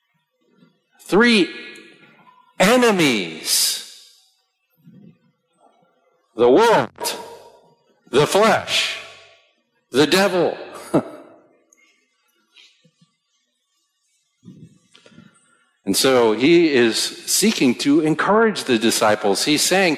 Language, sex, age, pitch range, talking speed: English, male, 50-69, 140-220 Hz, 55 wpm